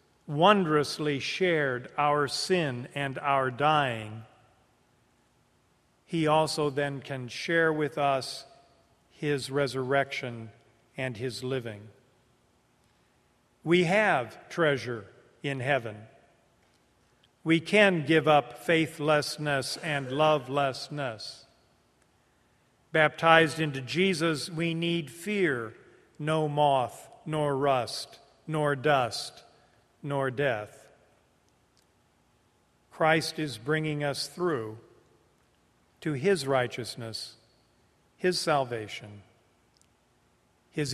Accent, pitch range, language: American, 120-150 Hz, English